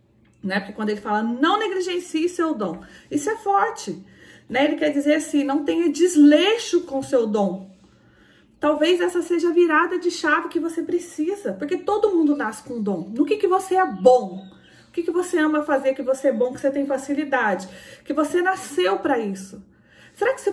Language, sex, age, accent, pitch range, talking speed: Portuguese, female, 30-49, Brazilian, 265-335 Hz, 195 wpm